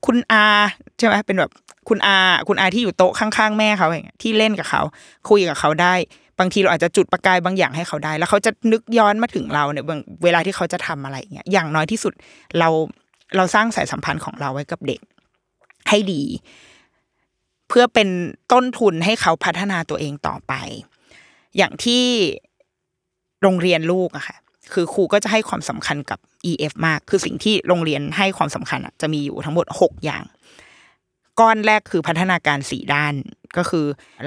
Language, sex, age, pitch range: Thai, female, 20-39, 165-215 Hz